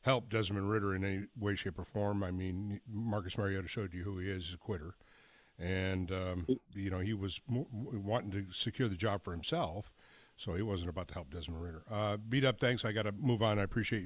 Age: 50-69